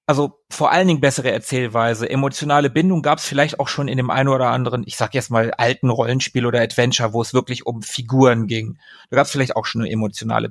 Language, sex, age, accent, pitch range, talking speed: German, male, 40-59, German, 130-170 Hz, 230 wpm